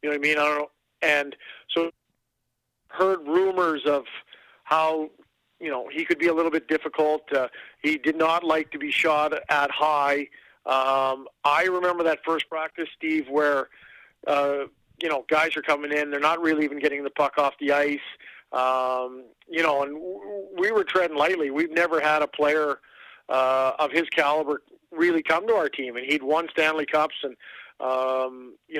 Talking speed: 185 wpm